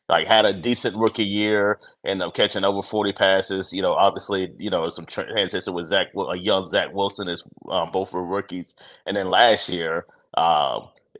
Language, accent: English, American